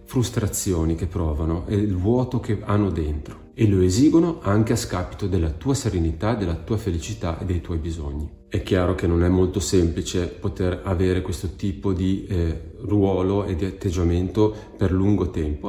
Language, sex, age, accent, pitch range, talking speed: Italian, male, 40-59, native, 85-105 Hz, 170 wpm